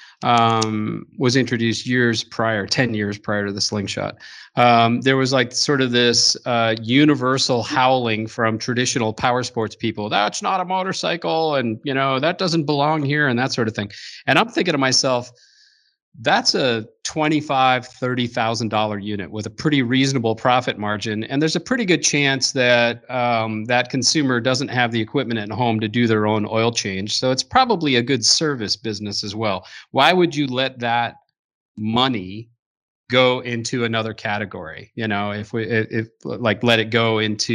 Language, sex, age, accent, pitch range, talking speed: English, male, 40-59, American, 110-135 Hz, 180 wpm